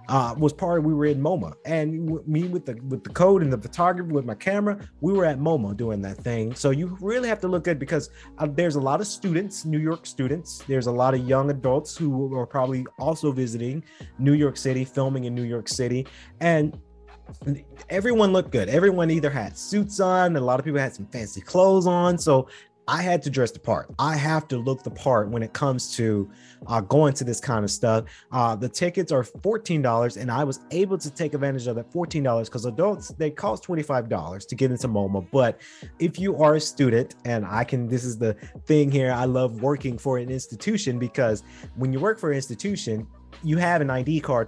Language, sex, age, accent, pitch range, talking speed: English, male, 30-49, American, 125-160 Hz, 220 wpm